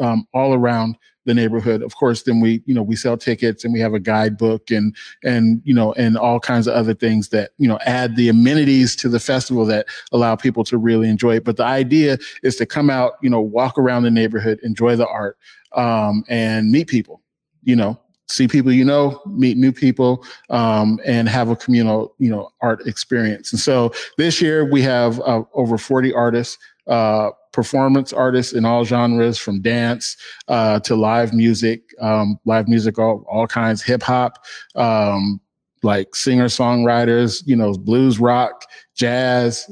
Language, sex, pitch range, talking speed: English, male, 115-135 Hz, 185 wpm